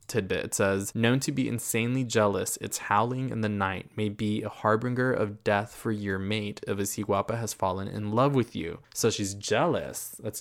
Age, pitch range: 20-39, 105-120 Hz